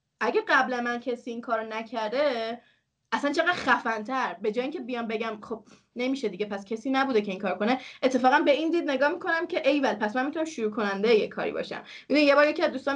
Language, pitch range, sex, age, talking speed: Persian, 215-280 Hz, female, 20-39, 215 wpm